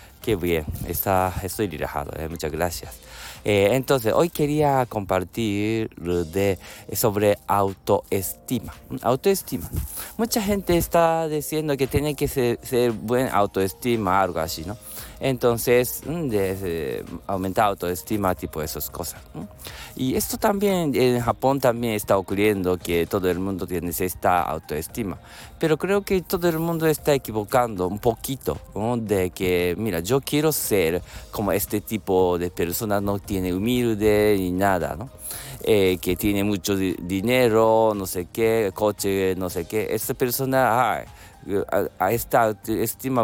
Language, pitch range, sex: Japanese, 95-130 Hz, male